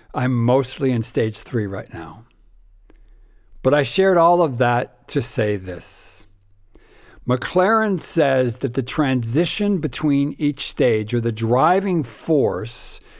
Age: 60-79